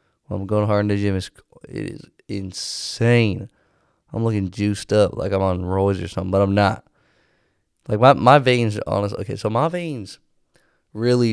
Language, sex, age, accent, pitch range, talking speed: English, male, 20-39, American, 95-115 Hz, 170 wpm